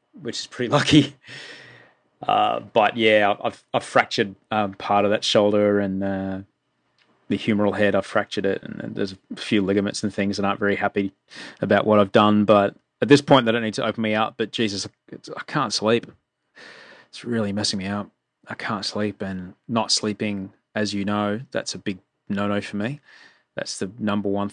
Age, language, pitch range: 20-39, English, 100-115 Hz